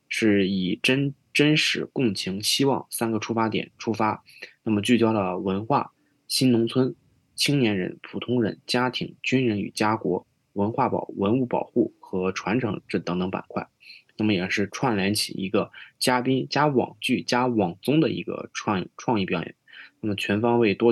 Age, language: 20-39, Chinese